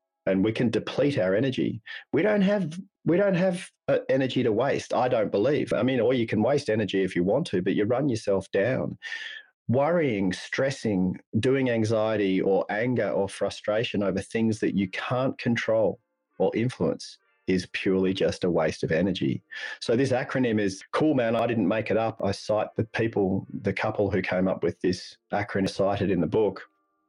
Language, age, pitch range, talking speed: English, 30-49, 95-120 Hz, 185 wpm